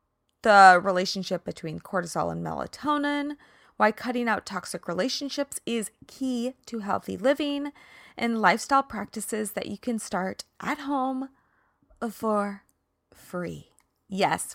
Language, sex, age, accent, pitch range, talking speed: English, female, 20-39, American, 185-255 Hz, 115 wpm